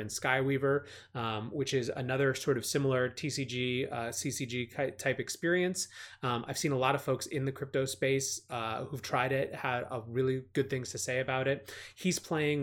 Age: 30-49